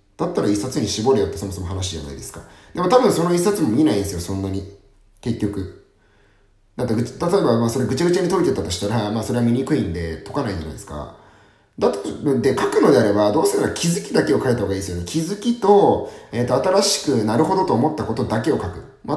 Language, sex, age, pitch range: Japanese, male, 30-49, 100-135 Hz